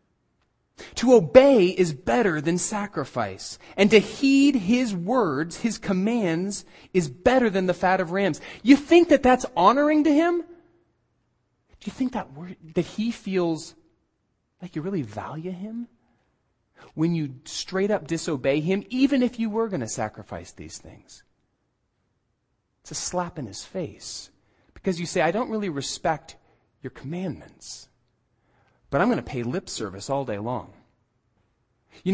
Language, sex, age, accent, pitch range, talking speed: English, male, 30-49, American, 120-195 Hz, 150 wpm